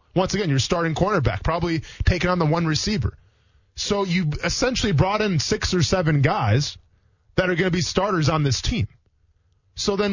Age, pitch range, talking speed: 20-39, 130-185 Hz, 185 wpm